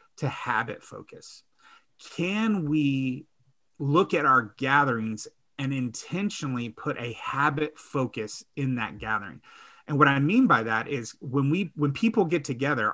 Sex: male